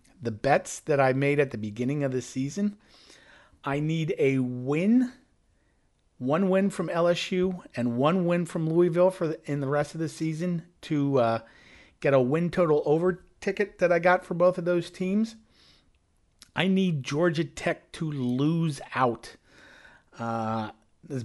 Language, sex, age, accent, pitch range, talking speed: English, male, 40-59, American, 120-165 Hz, 160 wpm